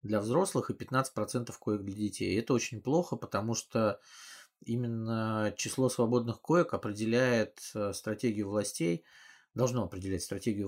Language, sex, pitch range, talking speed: Russian, male, 100-115 Hz, 125 wpm